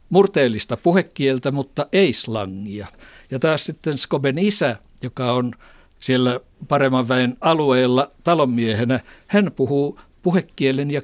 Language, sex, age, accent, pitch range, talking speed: Finnish, male, 60-79, native, 115-145 Hz, 115 wpm